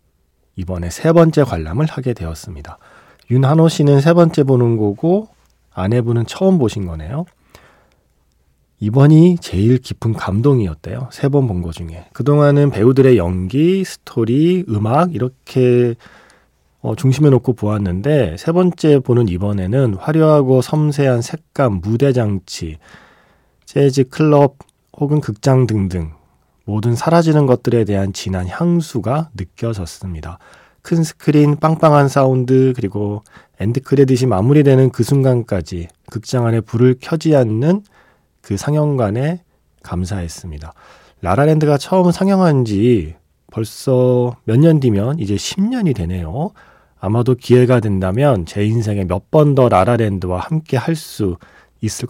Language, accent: Korean, native